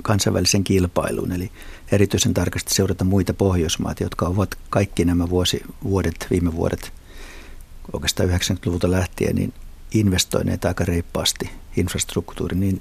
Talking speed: 110 wpm